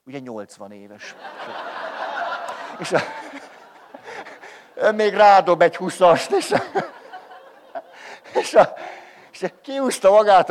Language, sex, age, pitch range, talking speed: Hungarian, male, 60-79, 140-205 Hz, 105 wpm